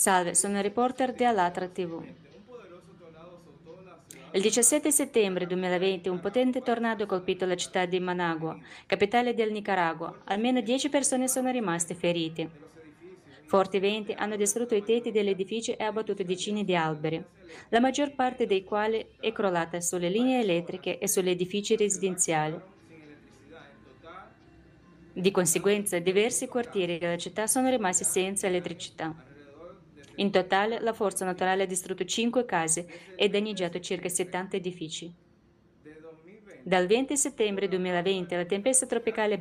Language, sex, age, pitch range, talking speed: Italian, female, 20-39, 175-220 Hz, 130 wpm